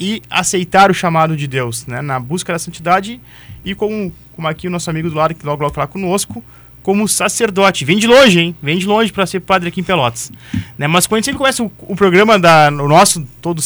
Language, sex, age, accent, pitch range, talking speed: Portuguese, male, 20-39, Brazilian, 140-195 Hz, 230 wpm